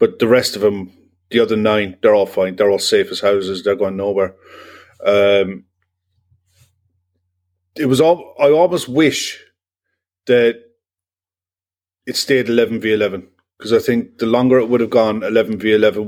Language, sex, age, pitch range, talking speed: English, male, 30-49, 95-115 Hz, 165 wpm